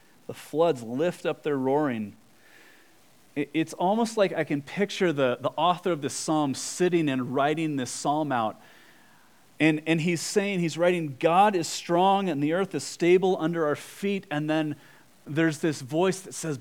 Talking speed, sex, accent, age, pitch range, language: 175 wpm, male, American, 30-49, 125-160 Hz, English